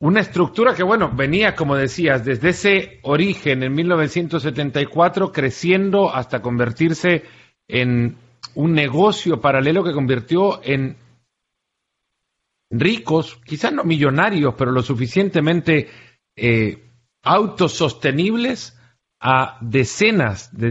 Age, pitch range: 50-69, 125-180 Hz